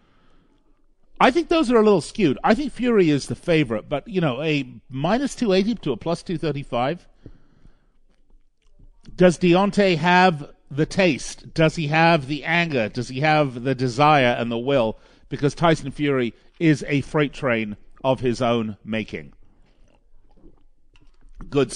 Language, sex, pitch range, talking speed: English, male, 115-160 Hz, 145 wpm